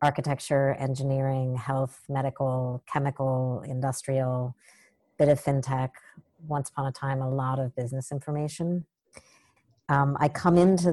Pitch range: 135-145 Hz